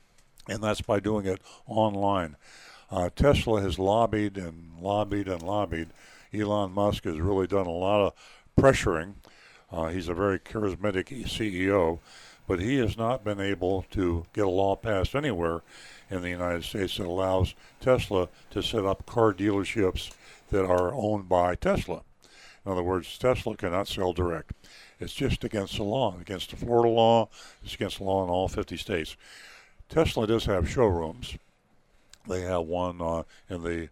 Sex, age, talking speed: male, 60-79, 165 wpm